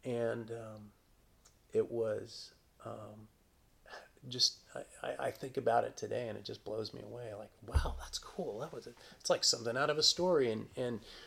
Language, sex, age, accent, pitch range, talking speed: English, male, 30-49, American, 105-125 Hz, 175 wpm